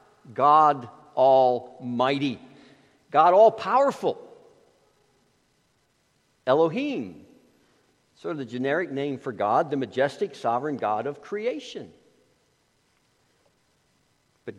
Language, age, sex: English, 60-79, male